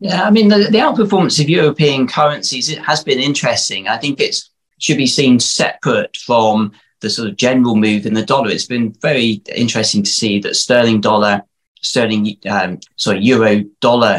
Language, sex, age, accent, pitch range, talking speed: English, male, 20-39, British, 110-135 Hz, 180 wpm